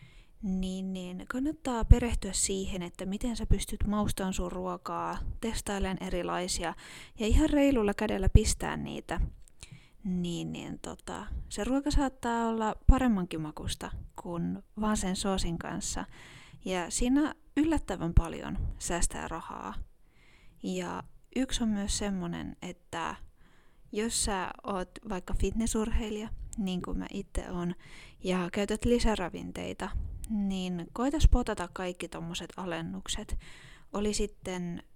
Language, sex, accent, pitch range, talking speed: Finnish, female, native, 175-215 Hz, 115 wpm